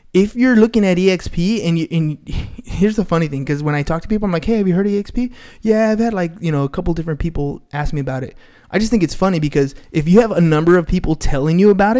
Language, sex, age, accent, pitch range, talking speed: English, male, 20-39, American, 145-190 Hz, 280 wpm